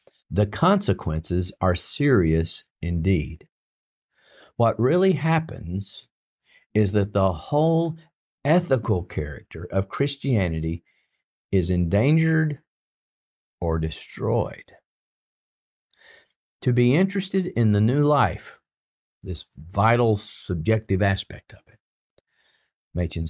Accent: American